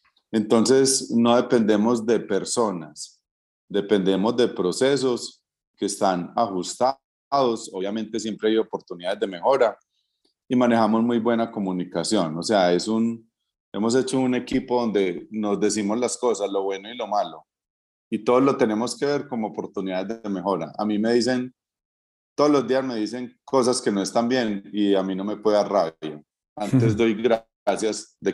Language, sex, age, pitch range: Spanish, male, 30-49, 95-115 Hz